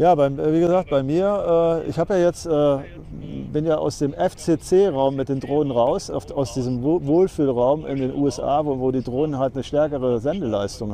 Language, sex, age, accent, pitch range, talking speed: German, male, 40-59, German, 125-155 Hz, 170 wpm